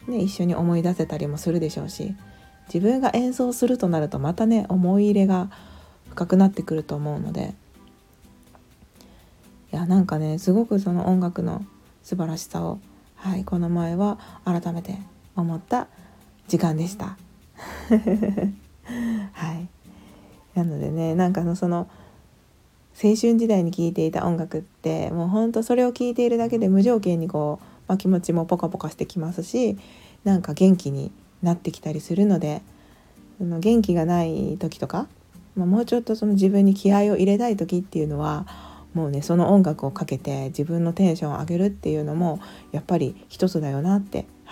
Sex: female